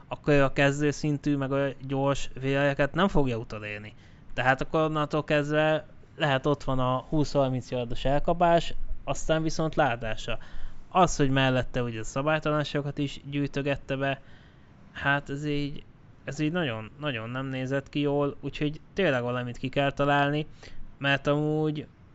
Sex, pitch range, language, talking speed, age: male, 125-145 Hz, Hungarian, 145 wpm, 20-39